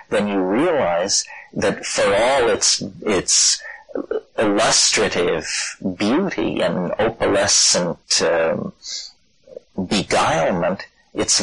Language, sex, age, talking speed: English, male, 40-59, 80 wpm